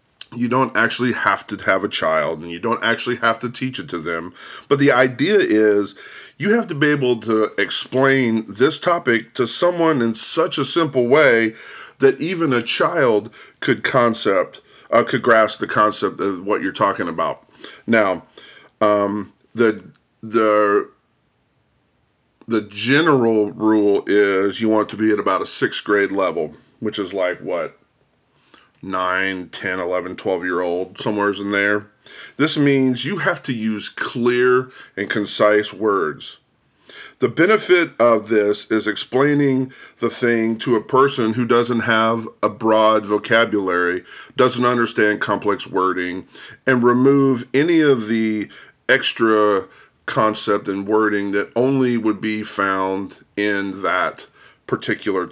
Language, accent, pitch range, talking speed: English, American, 105-125 Hz, 145 wpm